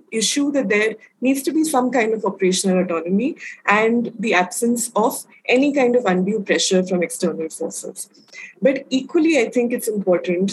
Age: 20-39